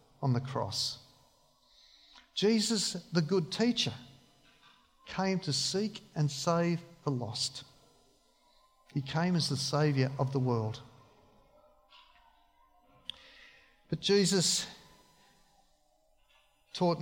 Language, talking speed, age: English, 90 wpm, 50-69